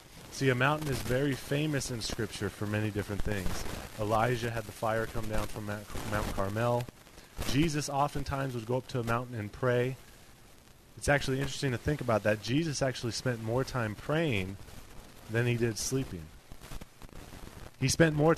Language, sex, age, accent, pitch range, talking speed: English, male, 30-49, American, 110-135 Hz, 165 wpm